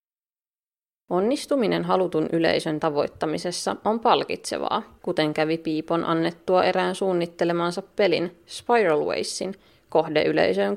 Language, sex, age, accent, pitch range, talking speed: Finnish, female, 20-39, native, 160-205 Hz, 95 wpm